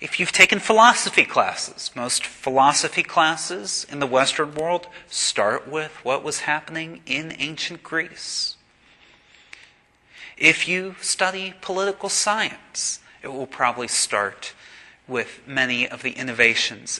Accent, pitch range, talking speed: American, 130-180 Hz, 120 wpm